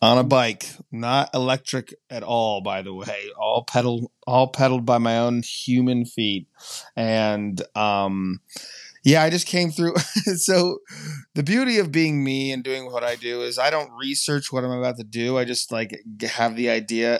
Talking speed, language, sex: 180 wpm, English, male